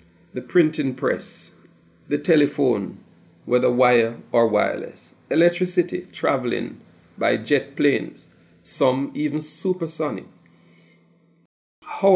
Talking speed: 90 wpm